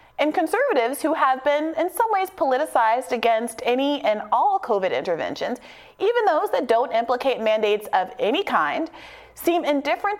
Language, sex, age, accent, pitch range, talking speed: English, female, 30-49, American, 210-310 Hz, 155 wpm